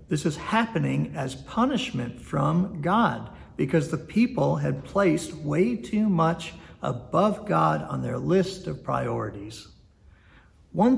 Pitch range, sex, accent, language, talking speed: 110-180 Hz, male, American, English, 125 wpm